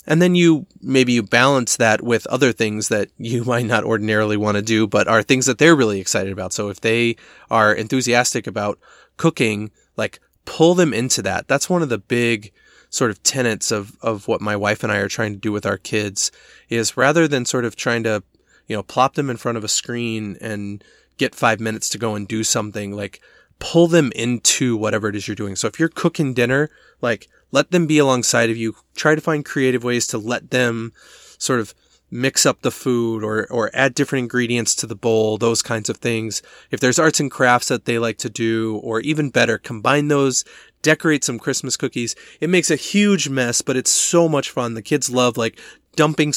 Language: English